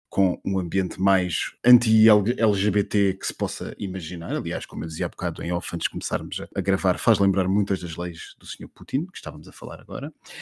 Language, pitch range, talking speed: Portuguese, 95-115 Hz, 205 wpm